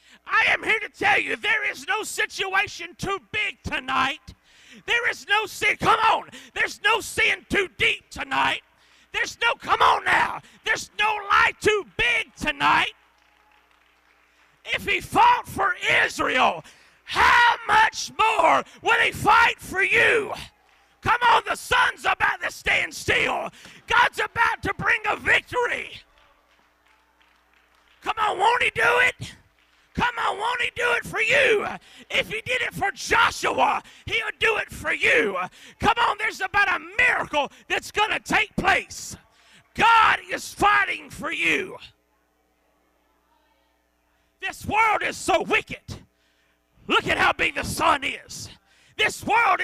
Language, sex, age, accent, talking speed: English, male, 40-59, American, 140 wpm